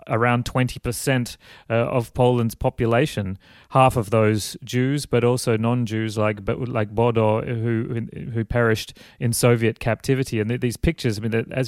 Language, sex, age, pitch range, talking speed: English, male, 30-49, 110-135 Hz, 140 wpm